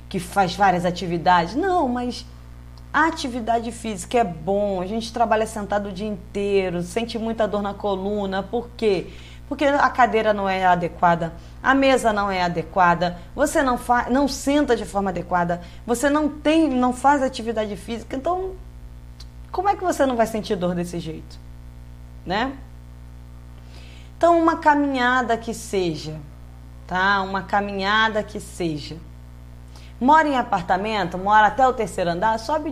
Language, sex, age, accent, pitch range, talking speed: Portuguese, female, 20-39, Brazilian, 170-235 Hz, 150 wpm